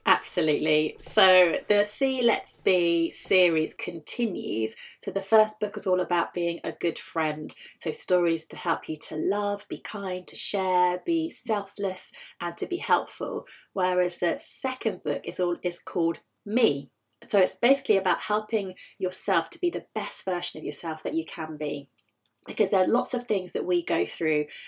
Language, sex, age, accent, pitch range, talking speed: English, female, 30-49, British, 170-210 Hz, 175 wpm